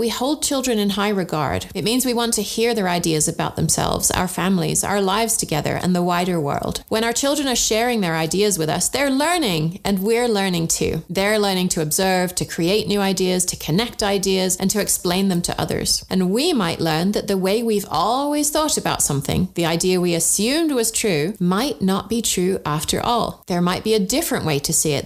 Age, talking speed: 30-49, 215 wpm